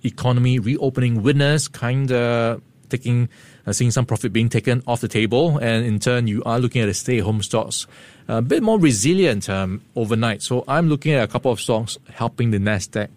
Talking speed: 190 wpm